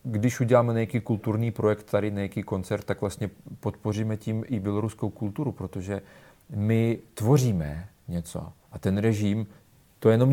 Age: 40-59